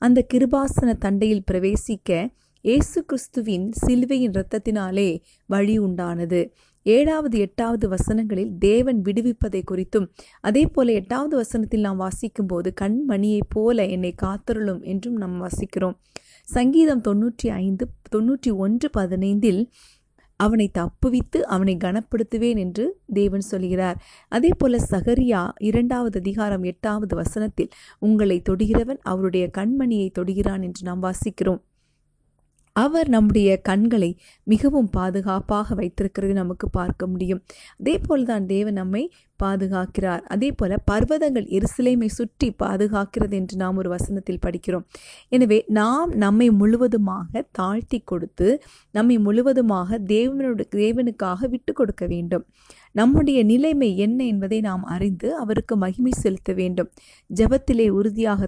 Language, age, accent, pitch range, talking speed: Tamil, 30-49, native, 190-240 Hz, 110 wpm